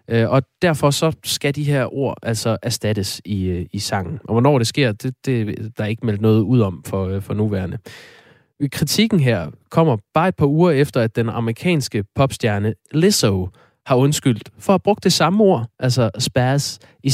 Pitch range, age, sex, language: 110-145 Hz, 20-39, male, Danish